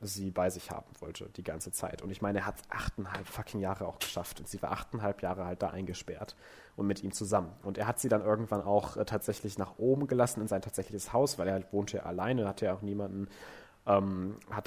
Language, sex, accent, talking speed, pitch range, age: German, male, German, 235 wpm, 95-105 Hz, 30-49